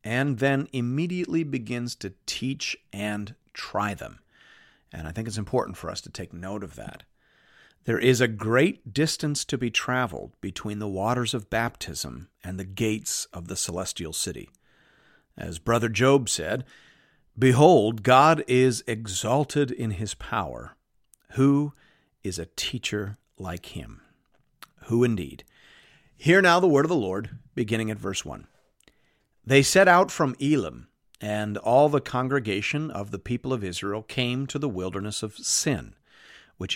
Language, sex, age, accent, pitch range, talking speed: English, male, 50-69, American, 105-140 Hz, 150 wpm